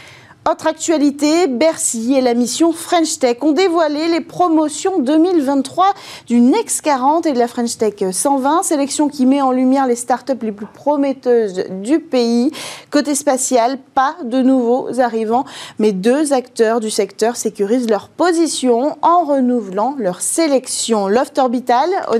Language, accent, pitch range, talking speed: French, French, 230-295 Hz, 150 wpm